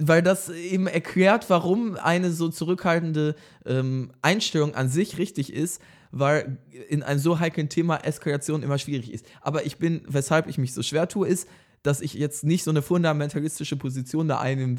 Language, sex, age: German, male, 20-39